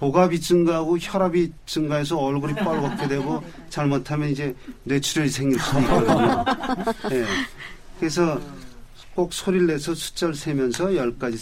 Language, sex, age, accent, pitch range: Korean, male, 40-59, native, 135-180 Hz